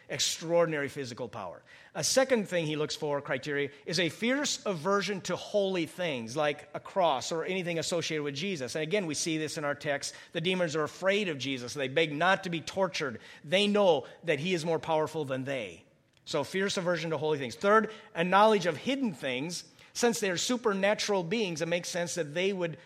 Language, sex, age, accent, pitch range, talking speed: English, male, 40-59, American, 155-200 Hz, 200 wpm